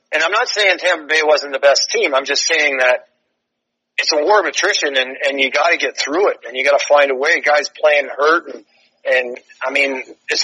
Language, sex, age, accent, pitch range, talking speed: English, male, 40-59, American, 130-155 Hz, 240 wpm